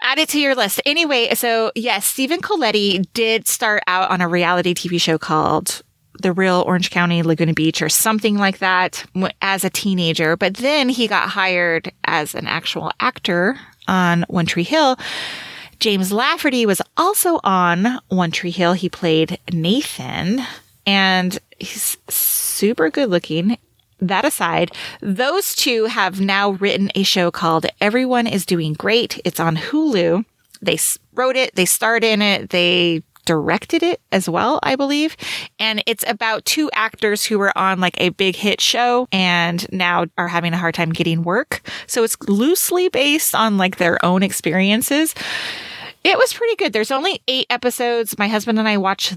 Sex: female